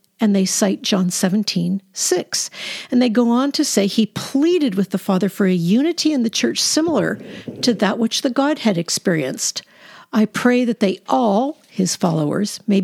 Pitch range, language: 195-265 Hz, English